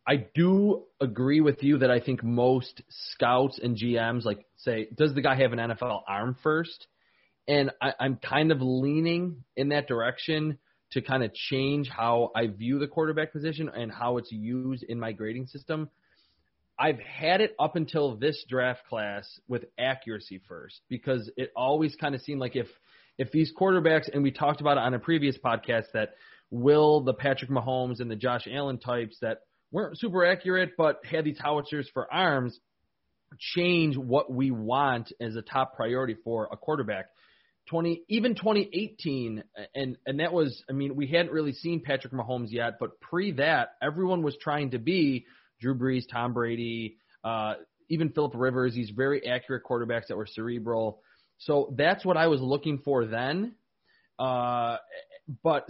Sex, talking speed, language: male, 175 wpm, English